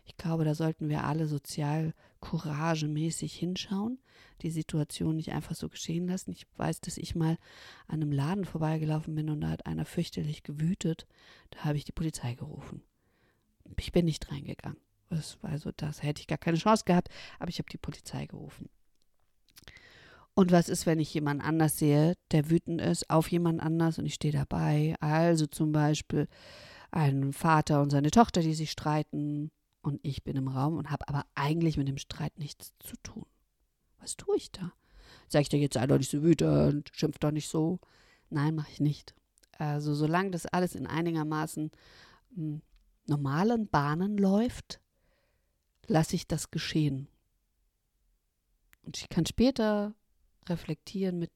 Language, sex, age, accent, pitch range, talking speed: German, female, 50-69, German, 145-170 Hz, 165 wpm